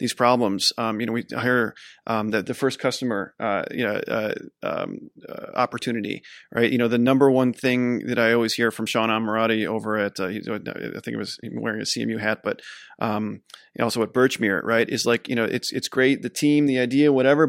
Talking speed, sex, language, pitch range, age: 210 wpm, male, English, 115-135 Hz, 30-49